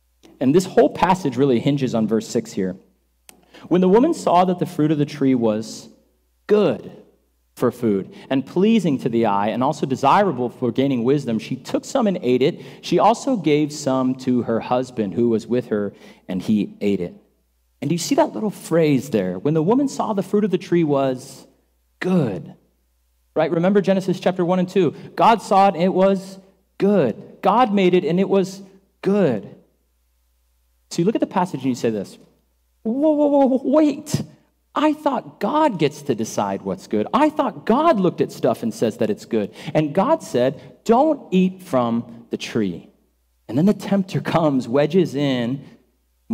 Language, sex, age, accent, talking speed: English, male, 40-59, American, 190 wpm